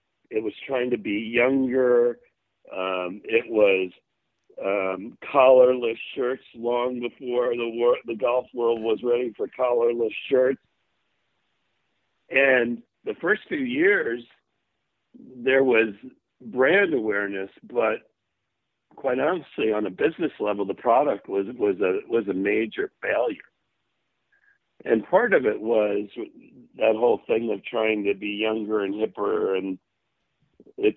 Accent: American